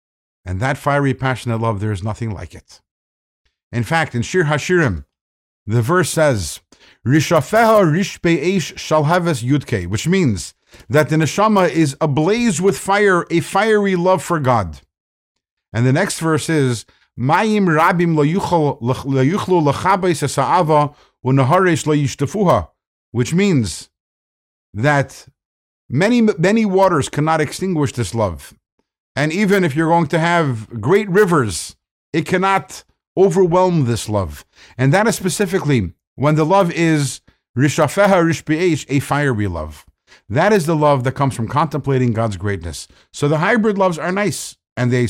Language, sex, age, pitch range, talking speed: English, male, 50-69, 120-175 Hz, 130 wpm